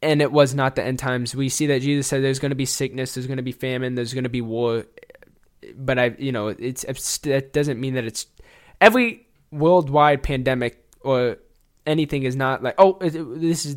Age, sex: 10-29, male